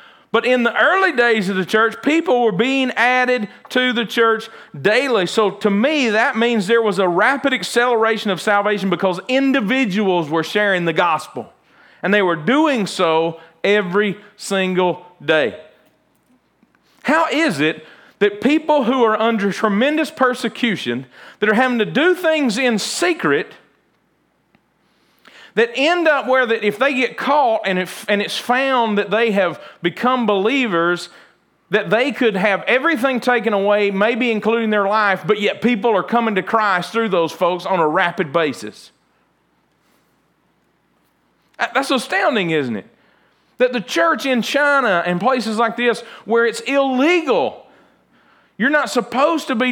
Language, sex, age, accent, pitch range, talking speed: English, male, 40-59, American, 200-255 Hz, 150 wpm